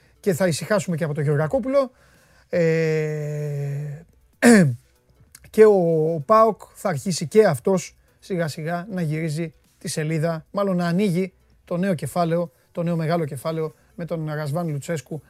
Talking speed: 135 wpm